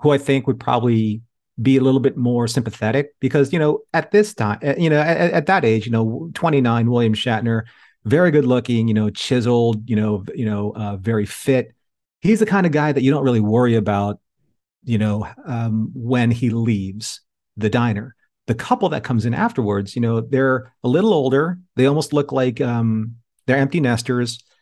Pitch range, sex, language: 110-130 Hz, male, English